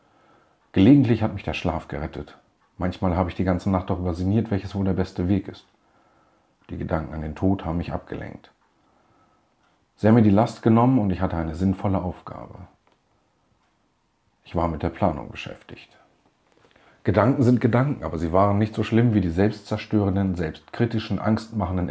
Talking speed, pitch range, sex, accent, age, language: 165 wpm, 90-110 Hz, male, German, 50-69, German